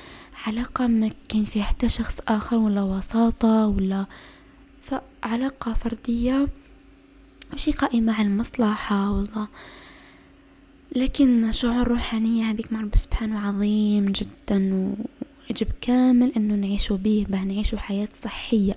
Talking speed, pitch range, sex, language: 110 wpm, 190-235 Hz, female, Arabic